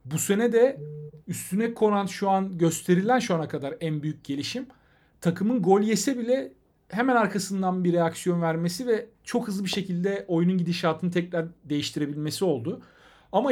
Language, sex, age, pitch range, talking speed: Turkish, male, 40-59, 145-205 Hz, 150 wpm